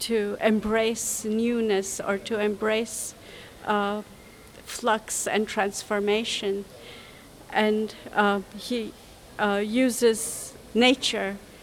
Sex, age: female, 50-69